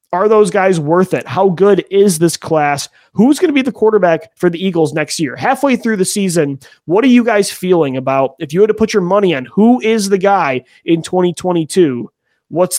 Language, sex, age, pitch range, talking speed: English, male, 30-49, 155-195 Hz, 215 wpm